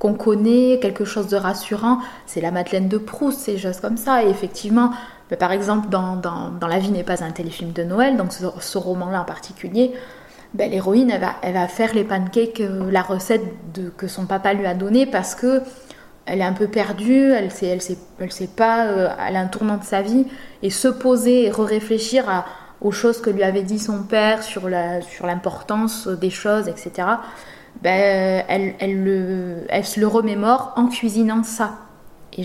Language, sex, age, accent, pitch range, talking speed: French, female, 20-39, French, 185-235 Hz, 205 wpm